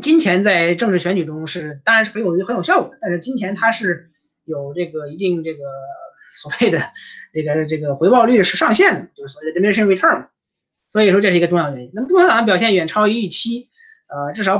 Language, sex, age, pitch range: Chinese, male, 20-39, 160-200 Hz